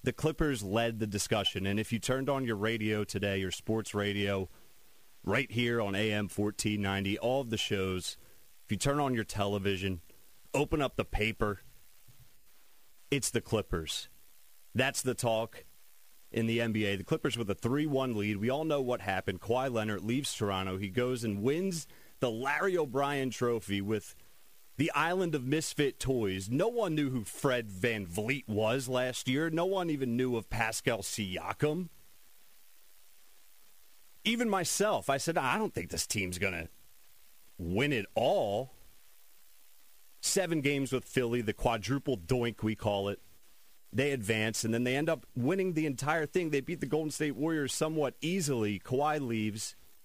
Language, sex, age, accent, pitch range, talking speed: English, male, 30-49, American, 105-140 Hz, 160 wpm